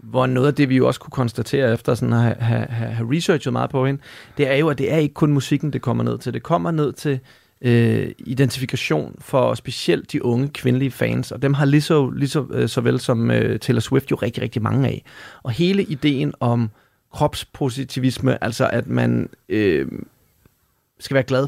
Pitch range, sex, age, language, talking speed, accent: 120-140 Hz, male, 30-49, Danish, 205 wpm, native